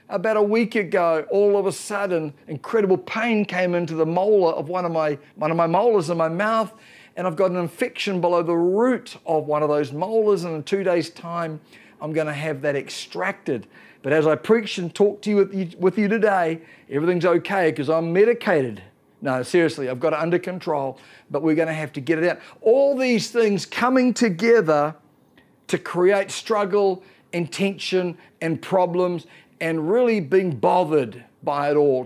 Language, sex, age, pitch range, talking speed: English, male, 50-69, 155-210 Hz, 190 wpm